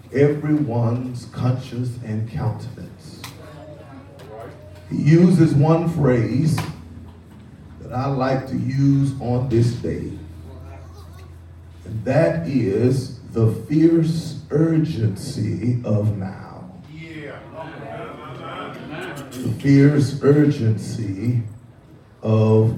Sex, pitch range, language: male, 115-145 Hz, English